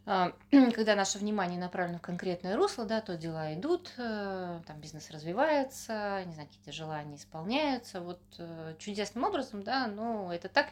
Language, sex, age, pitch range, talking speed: Russian, female, 20-39, 150-195 Hz, 145 wpm